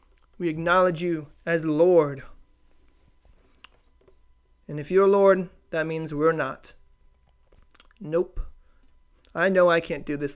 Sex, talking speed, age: male, 115 wpm, 20-39